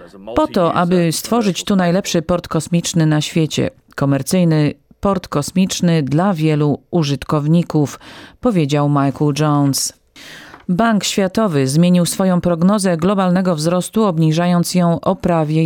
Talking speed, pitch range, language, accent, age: 115 wpm, 160-195 Hz, Polish, native, 40-59